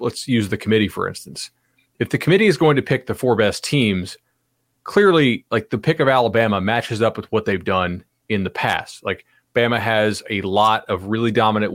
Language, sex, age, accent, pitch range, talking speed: English, male, 30-49, American, 105-140 Hz, 205 wpm